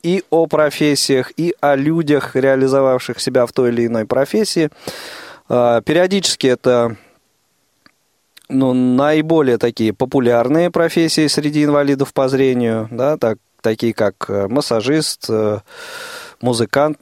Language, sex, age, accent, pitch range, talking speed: Russian, male, 20-39, native, 120-155 Hz, 105 wpm